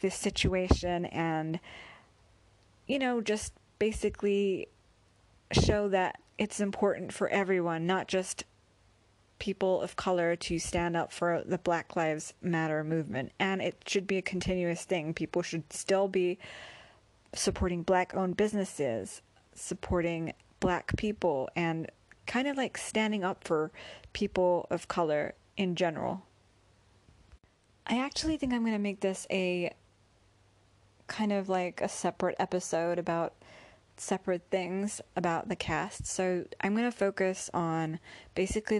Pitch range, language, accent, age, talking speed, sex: 160-195 Hz, English, American, 30-49, 130 wpm, female